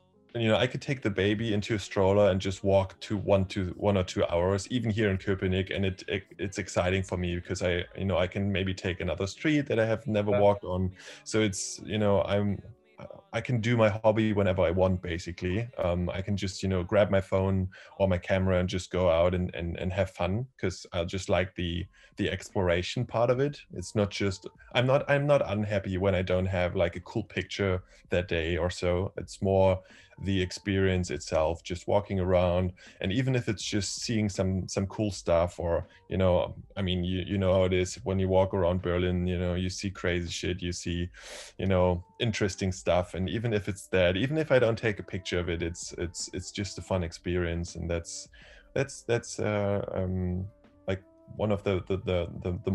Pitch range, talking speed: 90-105 Hz, 220 wpm